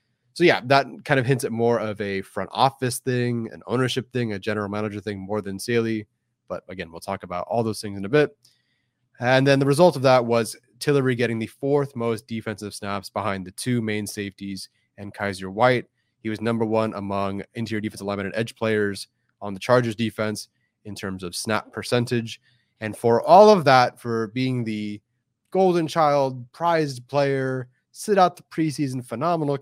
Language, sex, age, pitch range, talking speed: English, male, 30-49, 110-130 Hz, 190 wpm